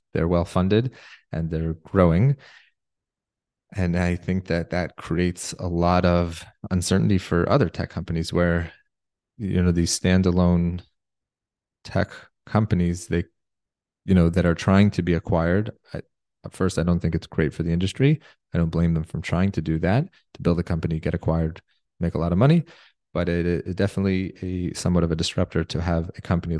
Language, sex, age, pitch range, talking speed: English, male, 20-39, 85-95 Hz, 175 wpm